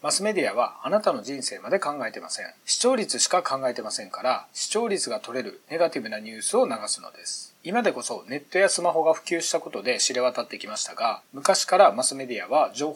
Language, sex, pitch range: Japanese, male, 130-195 Hz